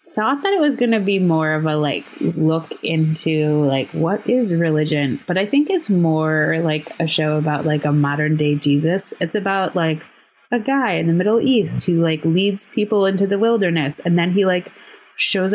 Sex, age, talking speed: female, 20-39, 200 wpm